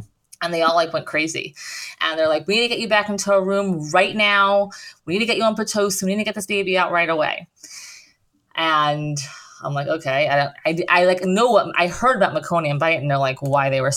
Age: 20-39